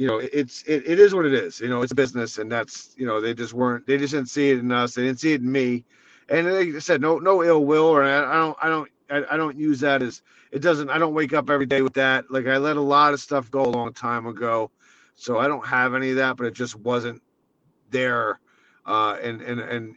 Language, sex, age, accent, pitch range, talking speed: English, male, 40-59, American, 120-145 Hz, 265 wpm